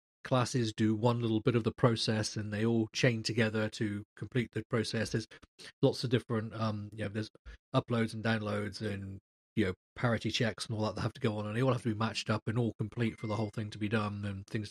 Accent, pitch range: British, 110-125 Hz